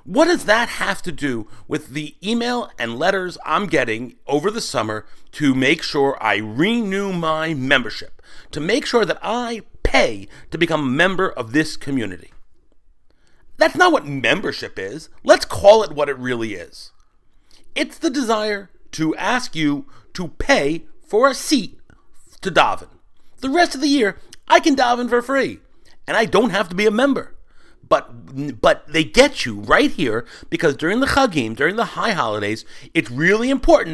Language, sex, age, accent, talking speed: English, male, 40-59, American, 170 wpm